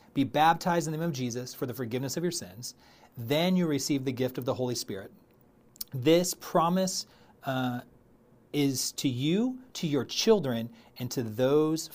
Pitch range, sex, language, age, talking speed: 120-150 Hz, male, English, 30-49, 170 wpm